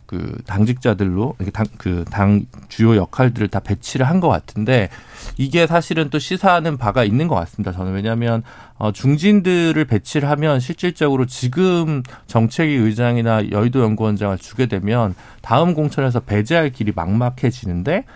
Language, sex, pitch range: Korean, male, 105-140 Hz